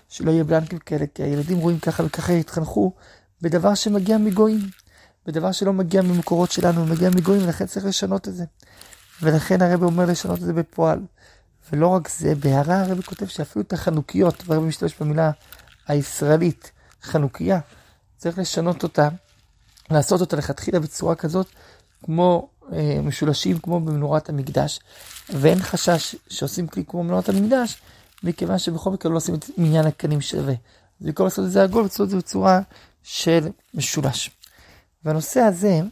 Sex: male